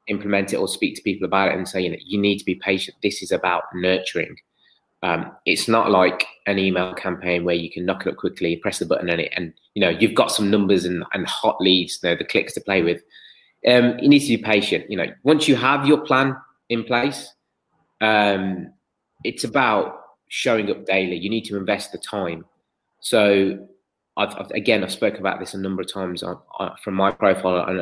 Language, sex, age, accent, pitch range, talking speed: English, male, 20-39, British, 95-120 Hz, 215 wpm